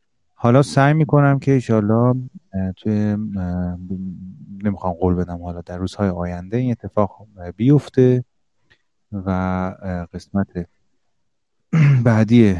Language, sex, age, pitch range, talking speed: Persian, male, 30-49, 95-125 Hz, 90 wpm